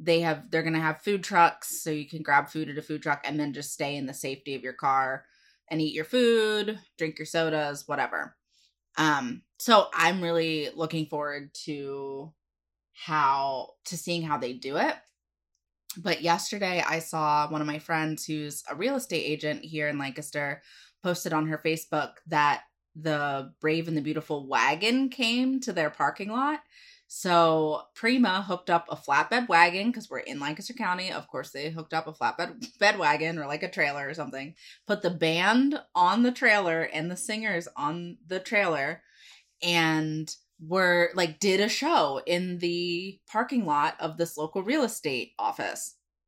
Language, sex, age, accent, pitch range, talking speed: English, female, 20-39, American, 150-180 Hz, 175 wpm